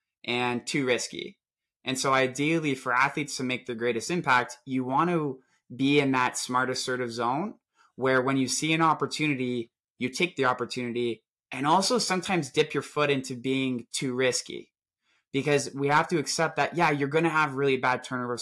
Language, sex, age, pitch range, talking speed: English, male, 20-39, 125-150 Hz, 175 wpm